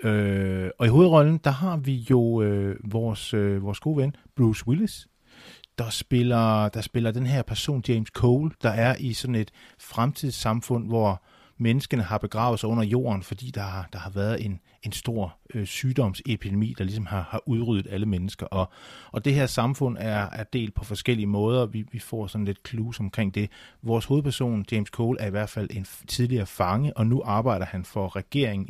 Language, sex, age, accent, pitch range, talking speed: Danish, male, 30-49, native, 100-125 Hz, 195 wpm